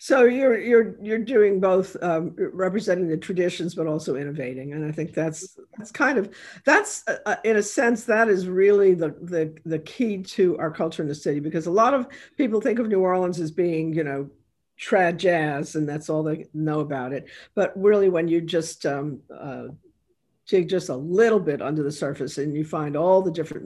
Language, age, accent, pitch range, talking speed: English, 50-69, American, 150-185 Hz, 205 wpm